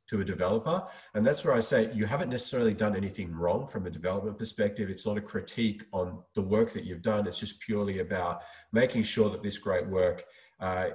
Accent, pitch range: Australian, 90-110 Hz